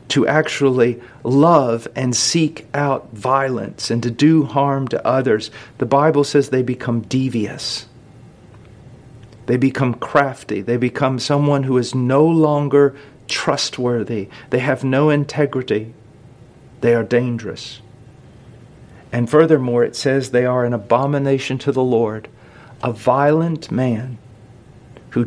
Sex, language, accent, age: male, English, American, 50-69